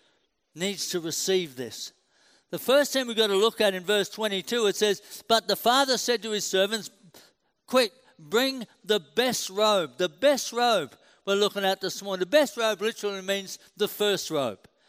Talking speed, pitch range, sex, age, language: 180 wpm, 180-230 Hz, male, 60-79, English